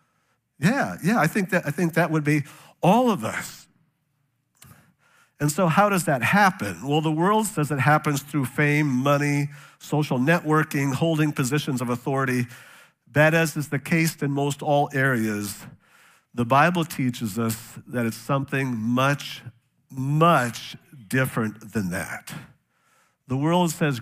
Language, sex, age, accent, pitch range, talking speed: English, male, 50-69, American, 120-155 Hz, 145 wpm